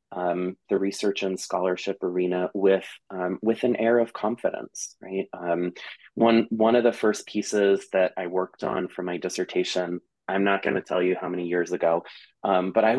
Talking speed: 190 wpm